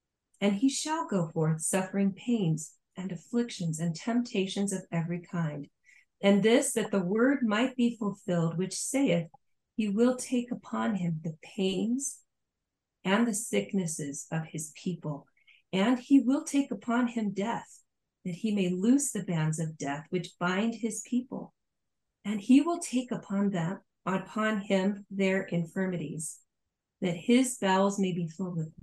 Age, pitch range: 40-59, 175-235 Hz